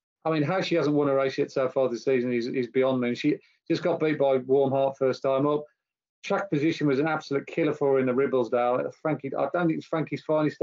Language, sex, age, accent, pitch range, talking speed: English, male, 40-59, British, 130-150 Hz, 265 wpm